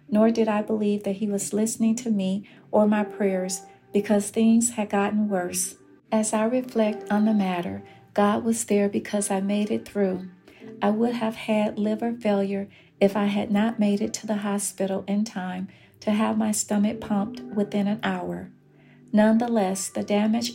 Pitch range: 200-225 Hz